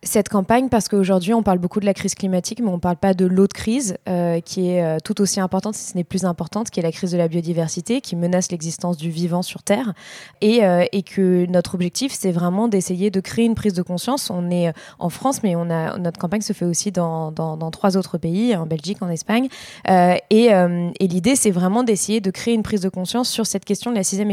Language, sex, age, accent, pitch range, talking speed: French, female, 20-39, French, 175-210 Hz, 250 wpm